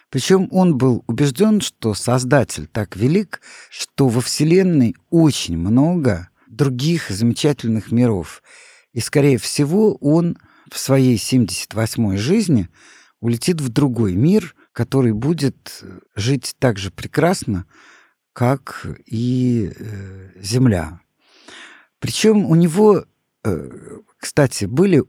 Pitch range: 110-160 Hz